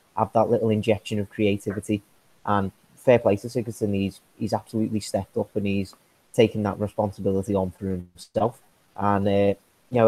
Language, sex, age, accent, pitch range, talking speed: English, male, 30-49, British, 100-115 Hz, 165 wpm